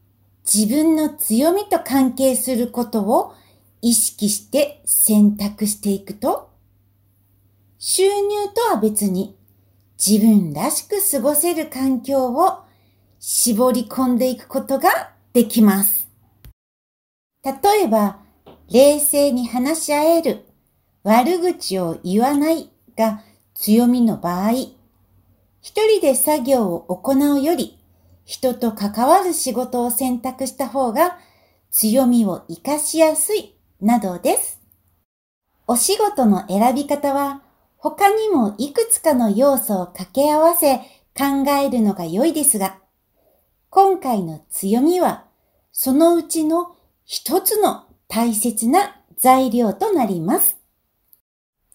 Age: 60-79